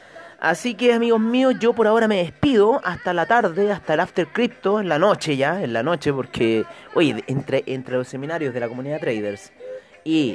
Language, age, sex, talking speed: Spanish, 30-49, male, 195 wpm